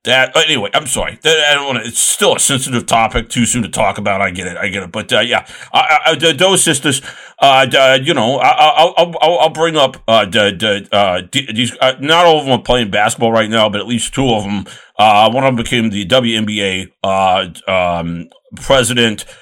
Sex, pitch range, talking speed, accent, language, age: male, 100-125 Hz, 215 wpm, American, English, 50-69